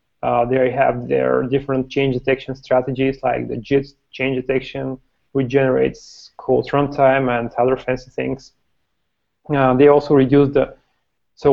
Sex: male